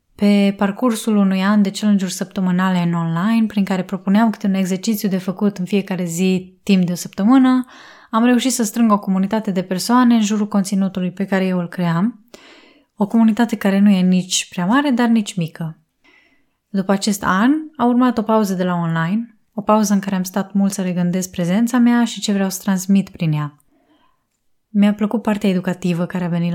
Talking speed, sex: 195 wpm, female